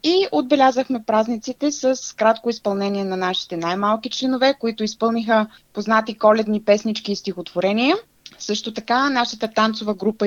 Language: Bulgarian